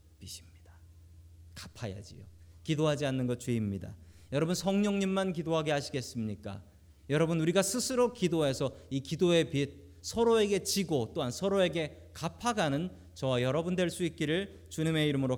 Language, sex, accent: Korean, male, native